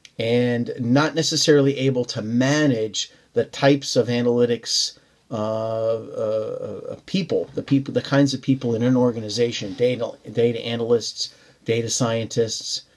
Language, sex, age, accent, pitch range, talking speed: English, male, 50-69, American, 115-140 Hz, 125 wpm